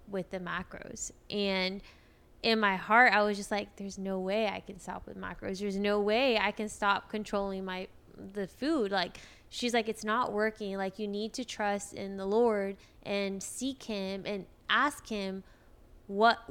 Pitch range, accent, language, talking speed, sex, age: 200-235 Hz, American, English, 180 wpm, female, 20-39